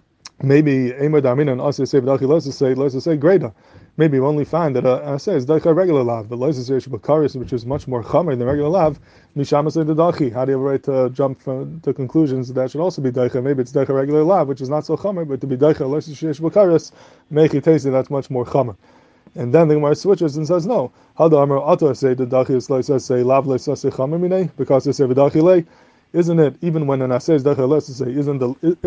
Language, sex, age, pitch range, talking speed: English, male, 20-39, 130-155 Hz, 245 wpm